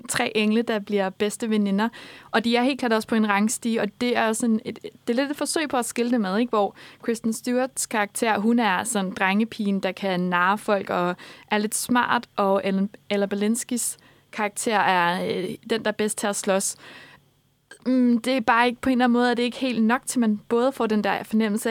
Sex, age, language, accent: female, 20-39, Danish, native